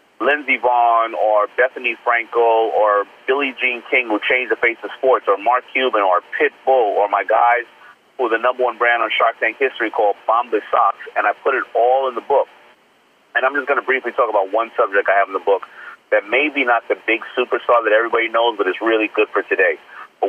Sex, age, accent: male, 30-49, American